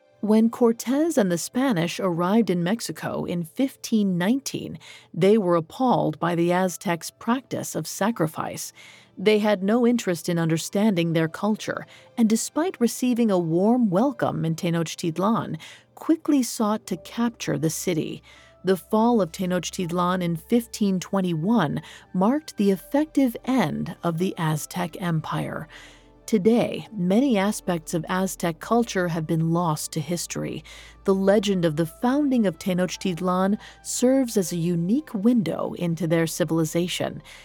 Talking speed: 130 wpm